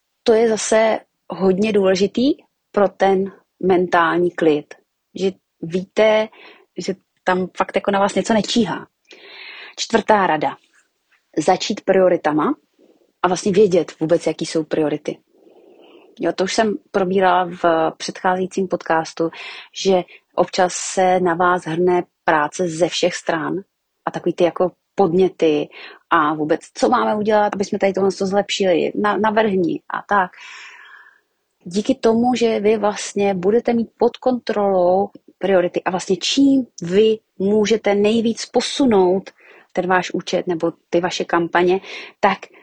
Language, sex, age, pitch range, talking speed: Czech, female, 30-49, 175-220 Hz, 130 wpm